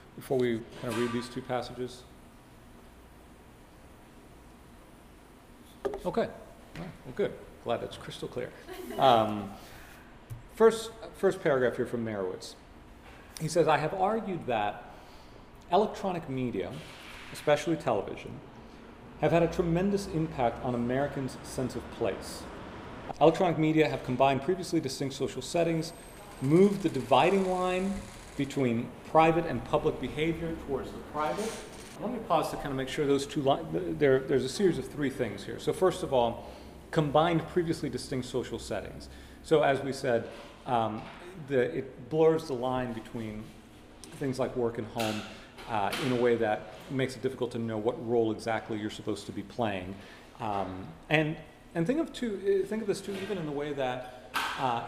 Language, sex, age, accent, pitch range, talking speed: English, male, 40-59, American, 115-160 Hz, 155 wpm